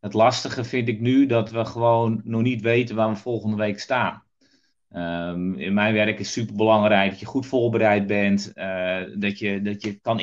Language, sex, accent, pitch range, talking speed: Dutch, male, Dutch, 100-125 Hz, 200 wpm